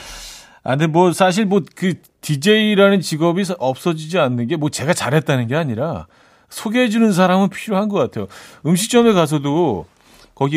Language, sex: Korean, male